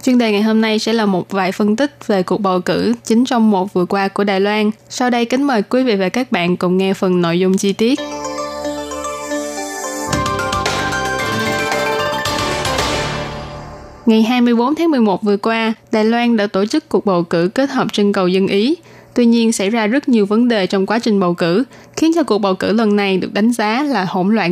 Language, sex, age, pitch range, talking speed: Vietnamese, female, 20-39, 185-230 Hz, 210 wpm